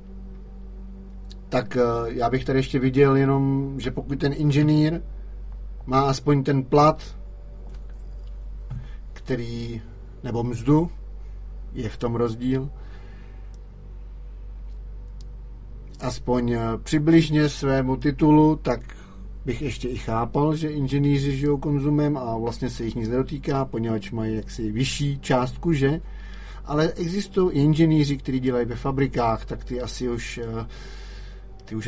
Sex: male